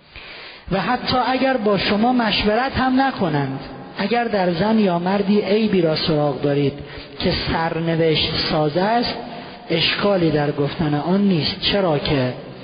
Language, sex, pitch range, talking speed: Persian, male, 150-205 Hz, 135 wpm